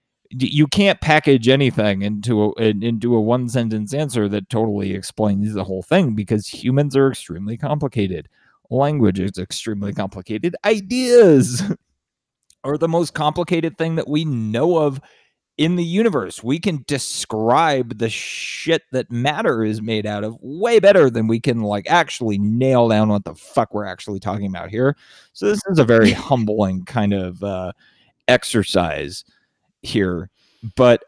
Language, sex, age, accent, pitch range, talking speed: English, male, 30-49, American, 105-135 Hz, 155 wpm